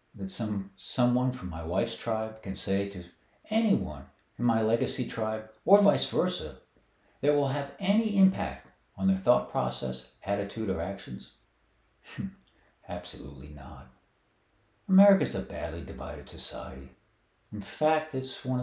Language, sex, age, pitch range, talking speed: English, male, 60-79, 95-145 Hz, 130 wpm